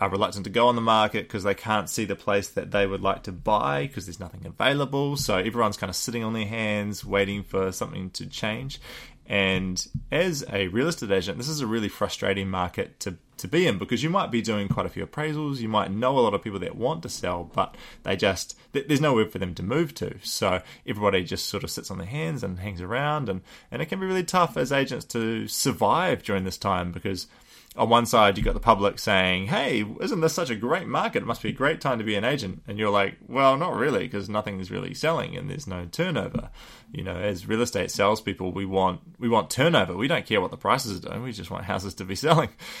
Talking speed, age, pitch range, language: 245 wpm, 20-39, 95-125 Hz, English